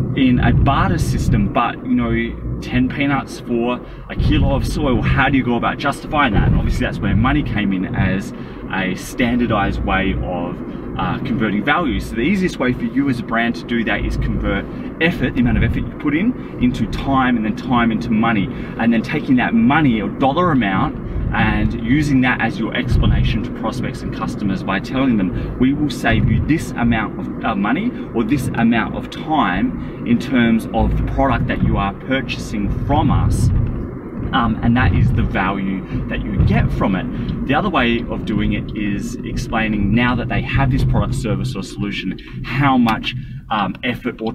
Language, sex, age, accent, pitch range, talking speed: English, male, 20-39, Australian, 105-130 Hz, 195 wpm